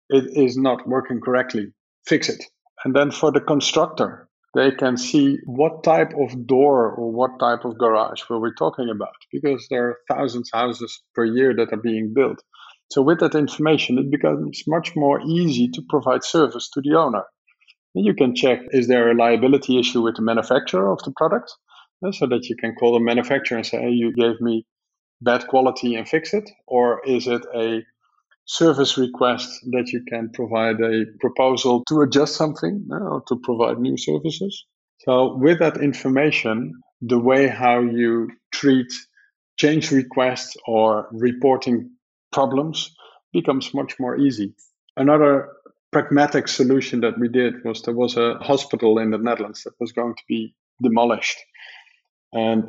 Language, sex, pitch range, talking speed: English, male, 115-140 Hz, 165 wpm